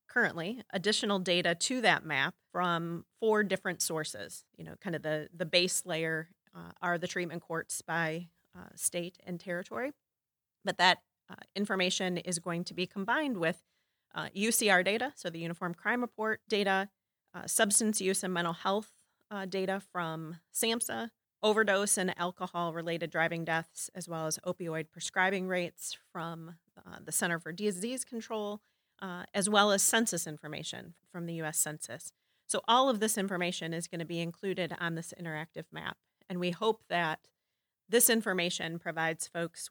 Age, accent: 30-49, American